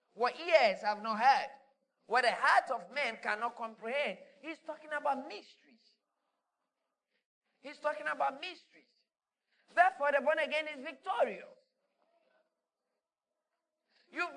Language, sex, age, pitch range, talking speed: English, male, 50-69, 215-310 Hz, 115 wpm